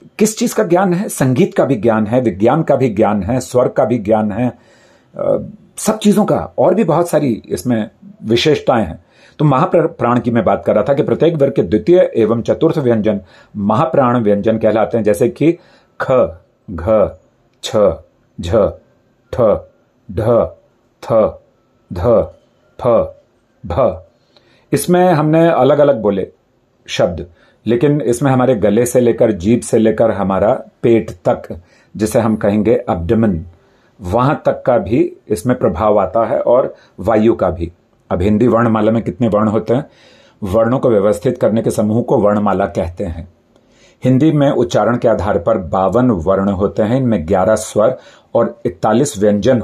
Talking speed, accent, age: 150 wpm, native, 40-59